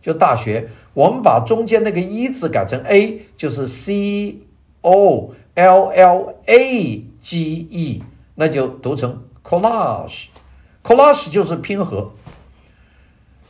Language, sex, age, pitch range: Chinese, male, 50-69, 125-210 Hz